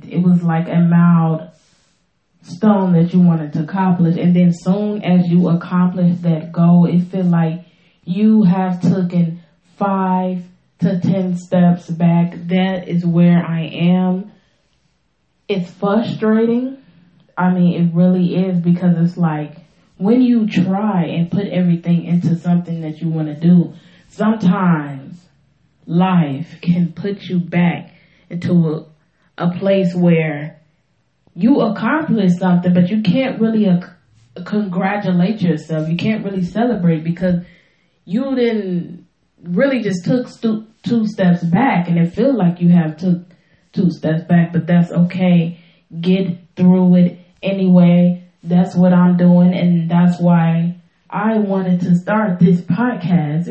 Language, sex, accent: English, female, American